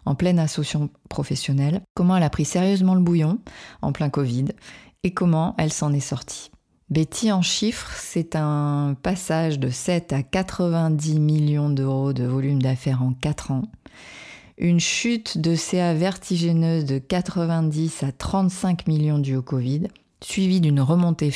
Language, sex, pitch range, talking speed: French, female, 145-180 Hz, 150 wpm